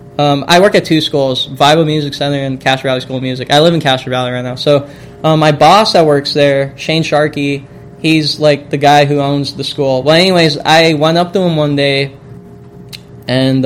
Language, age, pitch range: English, 10-29, 135-160 Hz